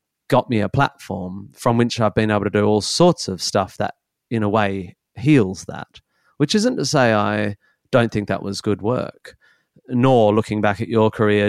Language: English